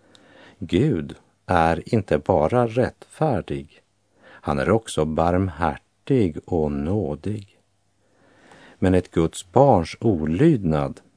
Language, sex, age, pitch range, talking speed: Polish, male, 50-69, 85-105 Hz, 85 wpm